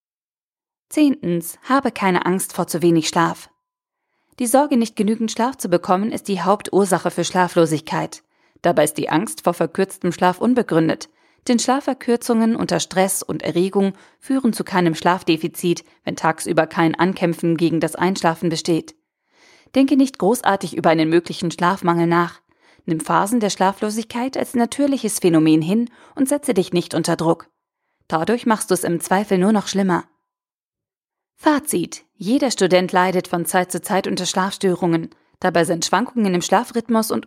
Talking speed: 150 wpm